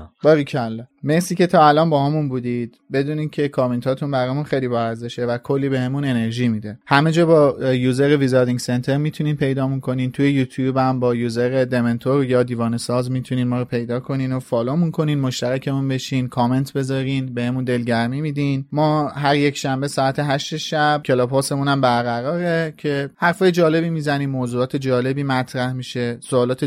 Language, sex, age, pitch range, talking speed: Persian, male, 30-49, 130-155 Hz, 165 wpm